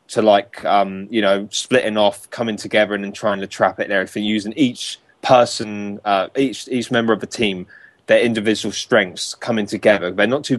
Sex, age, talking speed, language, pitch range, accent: male, 20-39, 205 wpm, English, 100-115 Hz, British